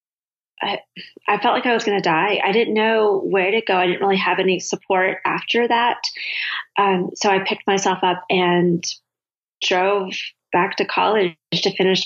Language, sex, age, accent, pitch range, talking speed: English, female, 30-49, American, 180-210 Hz, 180 wpm